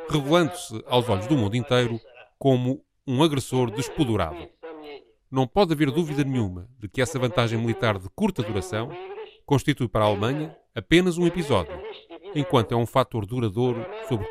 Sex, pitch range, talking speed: male, 120-180 Hz, 150 wpm